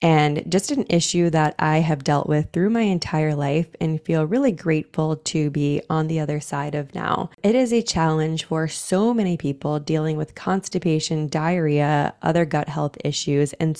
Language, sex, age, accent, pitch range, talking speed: English, female, 20-39, American, 150-180 Hz, 185 wpm